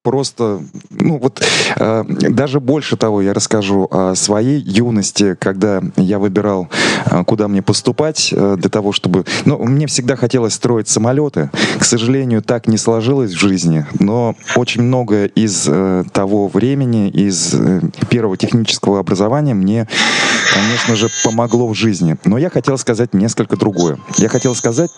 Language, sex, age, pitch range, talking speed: Russian, male, 20-39, 105-135 Hz, 150 wpm